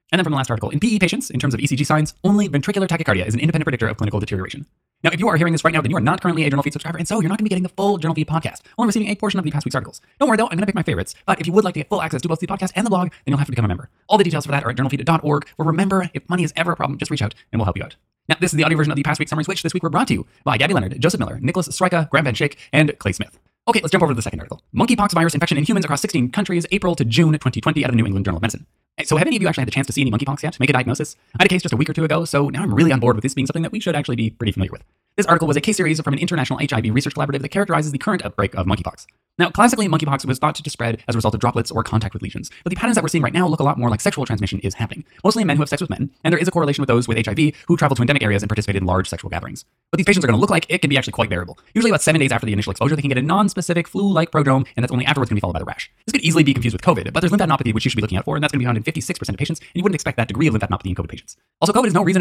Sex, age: male, 20-39